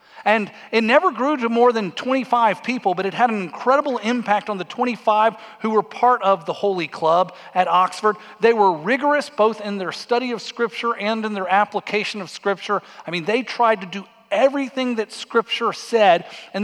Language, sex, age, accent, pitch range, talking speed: English, male, 40-59, American, 180-230 Hz, 190 wpm